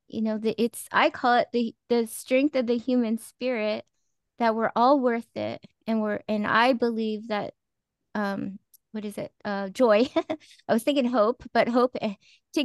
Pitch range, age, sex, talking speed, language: 220-265 Hz, 20-39, female, 175 wpm, English